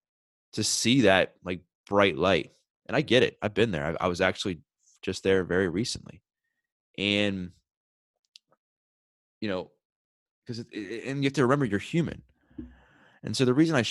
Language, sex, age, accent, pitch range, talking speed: English, male, 20-39, American, 85-105 Hz, 170 wpm